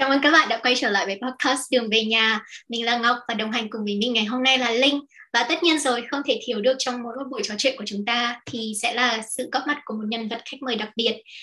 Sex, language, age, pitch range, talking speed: male, Vietnamese, 10-29, 220-275 Hz, 300 wpm